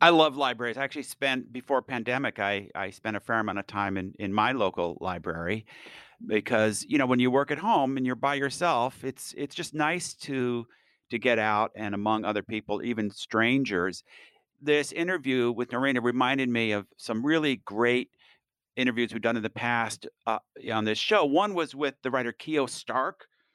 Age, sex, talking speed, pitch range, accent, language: 50-69, male, 190 wpm, 115-150 Hz, American, English